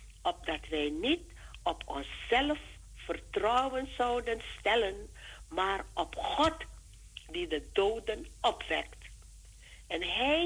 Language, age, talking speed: Dutch, 50-69, 100 wpm